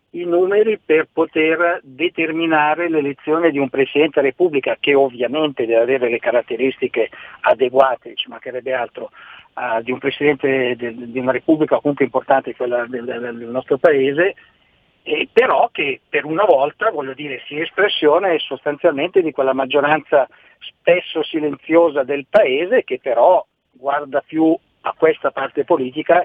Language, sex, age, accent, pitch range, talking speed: Italian, male, 50-69, native, 130-160 Hz, 145 wpm